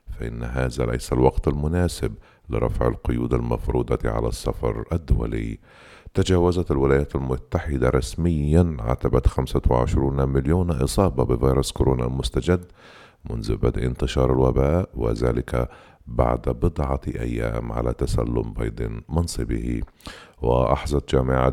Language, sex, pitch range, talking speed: Arabic, male, 65-80 Hz, 100 wpm